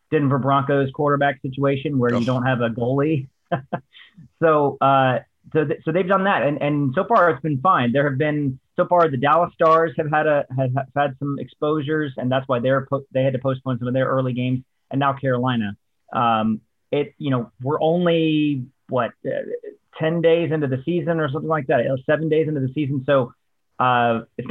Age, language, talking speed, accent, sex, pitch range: 30-49, English, 205 wpm, American, male, 125-160 Hz